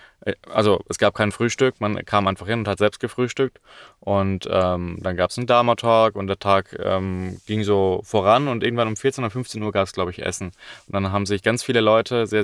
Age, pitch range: 20-39, 100-125 Hz